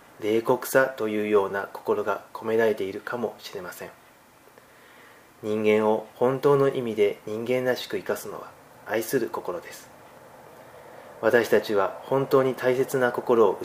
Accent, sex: native, male